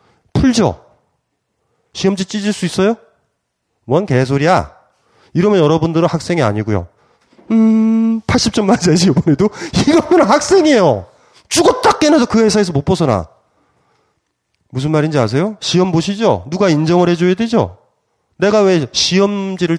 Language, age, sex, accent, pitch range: Korean, 30-49, male, native, 145-225 Hz